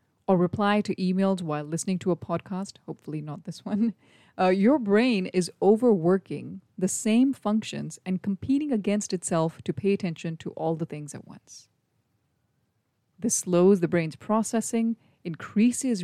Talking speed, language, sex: 150 wpm, English, female